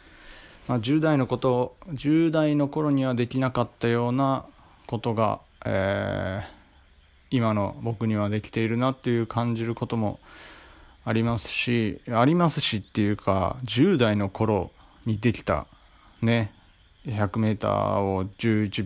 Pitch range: 100-125 Hz